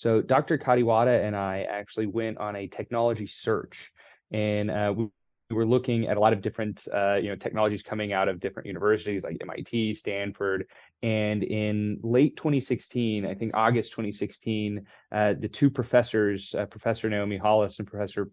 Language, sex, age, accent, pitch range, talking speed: English, male, 20-39, American, 105-115 Hz, 165 wpm